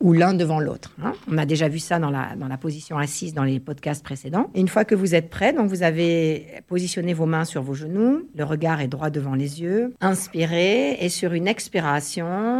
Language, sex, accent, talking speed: French, female, French, 220 wpm